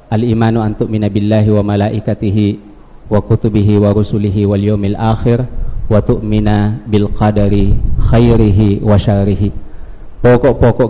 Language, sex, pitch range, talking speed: Malay, male, 105-115 Hz, 115 wpm